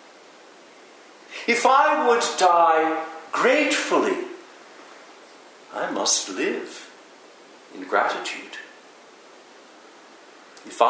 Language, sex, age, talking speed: English, male, 60-79, 60 wpm